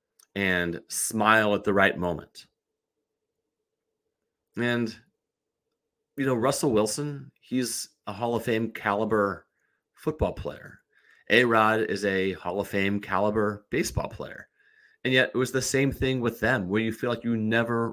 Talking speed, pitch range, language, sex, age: 145 wpm, 95-120 Hz, English, male, 30-49